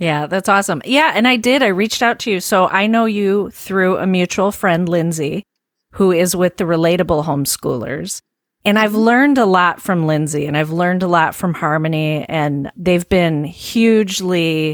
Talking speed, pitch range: 185 wpm, 170-205 Hz